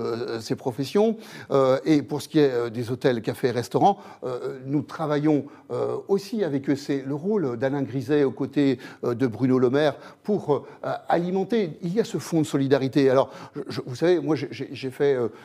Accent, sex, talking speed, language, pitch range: French, male, 170 wpm, French, 130-160 Hz